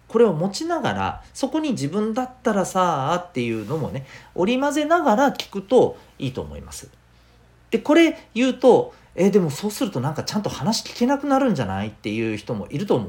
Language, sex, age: Japanese, male, 40-59